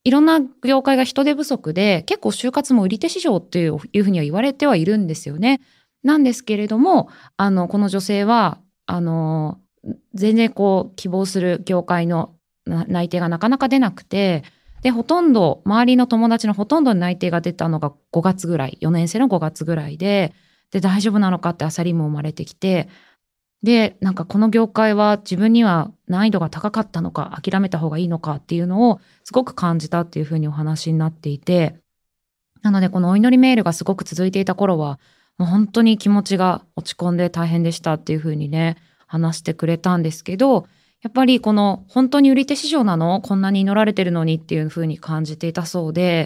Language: Japanese